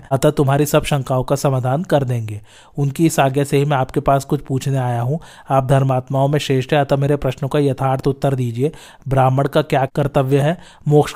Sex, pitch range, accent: male, 135-145 Hz, native